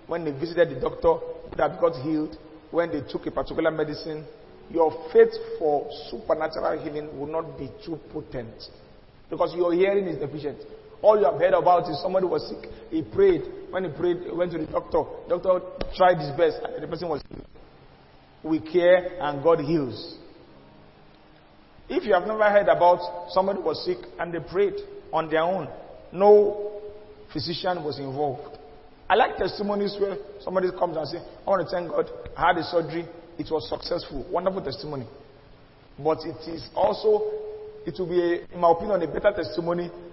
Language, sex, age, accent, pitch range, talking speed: English, male, 40-59, Nigerian, 155-200 Hz, 175 wpm